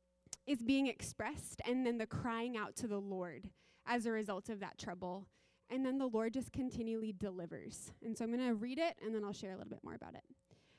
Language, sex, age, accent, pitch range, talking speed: English, female, 20-39, American, 210-250 Hz, 230 wpm